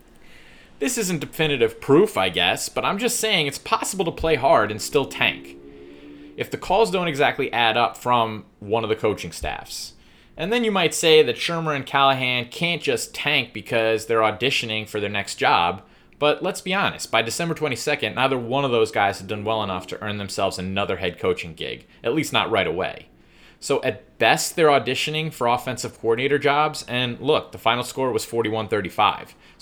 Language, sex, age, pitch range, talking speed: English, male, 30-49, 105-150 Hz, 190 wpm